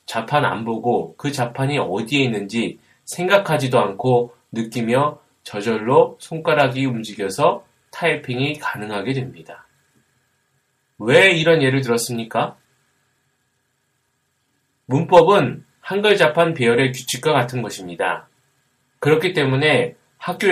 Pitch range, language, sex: 125-160 Hz, Korean, male